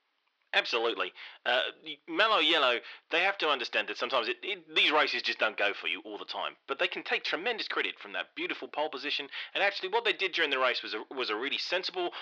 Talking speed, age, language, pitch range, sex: 230 wpm, 30-49, English, 115-190 Hz, male